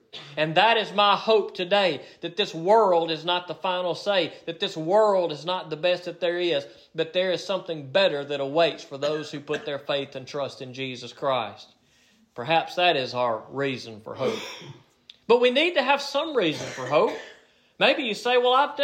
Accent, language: American, English